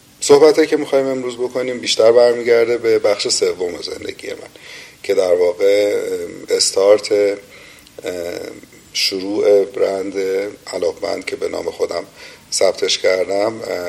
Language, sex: Persian, male